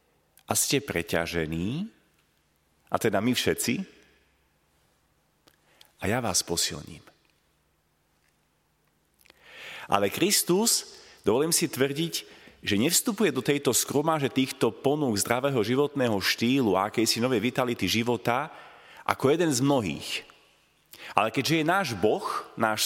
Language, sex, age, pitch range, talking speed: Slovak, male, 40-59, 125-185 Hz, 110 wpm